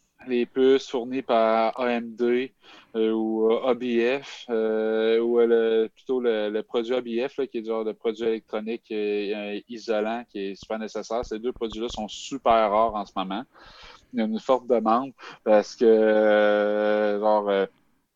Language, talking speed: English, 150 wpm